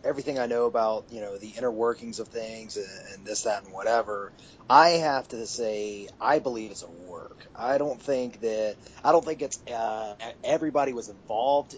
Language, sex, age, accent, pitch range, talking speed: English, male, 30-49, American, 105-130 Hz, 190 wpm